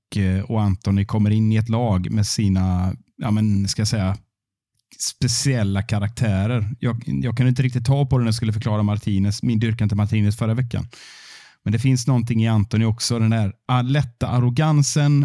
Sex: male